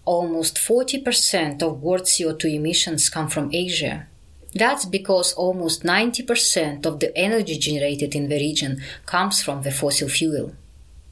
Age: 20-39